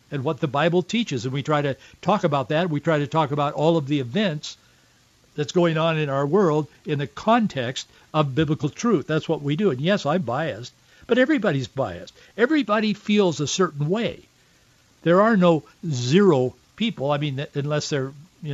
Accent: American